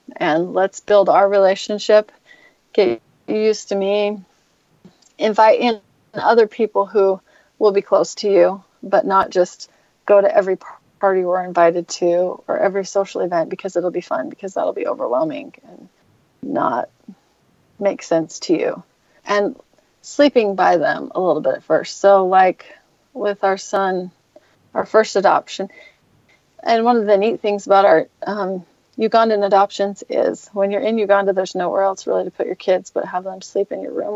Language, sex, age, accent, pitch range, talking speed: English, female, 30-49, American, 190-220 Hz, 165 wpm